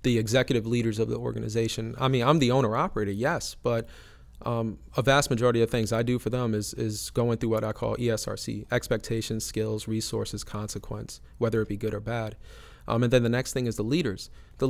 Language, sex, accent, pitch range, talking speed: English, male, American, 110-125 Hz, 210 wpm